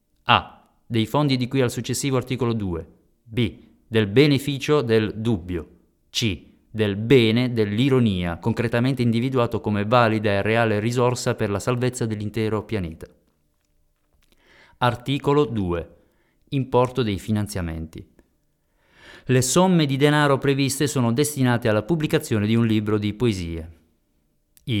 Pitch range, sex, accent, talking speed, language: 105-130 Hz, male, native, 120 wpm, Italian